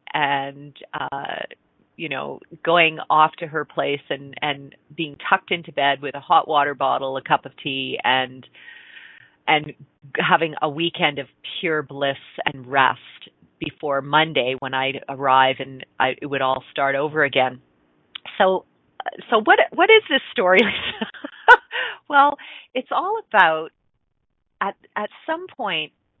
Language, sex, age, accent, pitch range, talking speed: English, female, 30-49, American, 135-160 Hz, 140 wpm